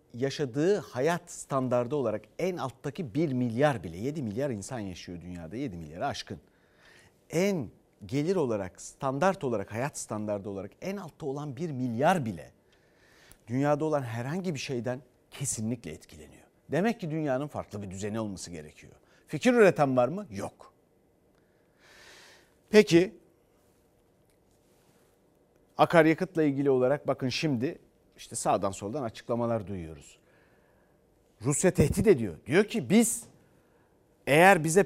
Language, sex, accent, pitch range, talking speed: Turkish, male, native, 120-180 Hz, 120 wpm